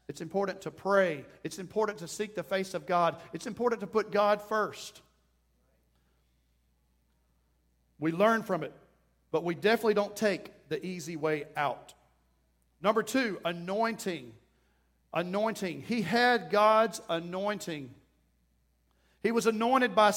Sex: male